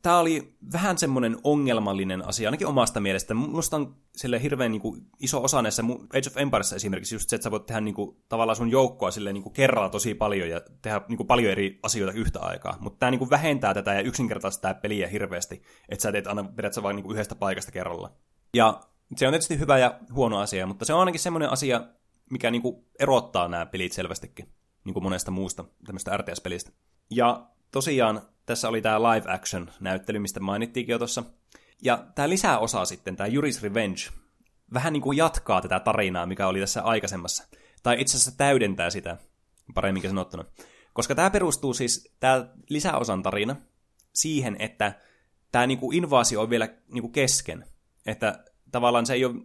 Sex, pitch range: male, 100-130 Hz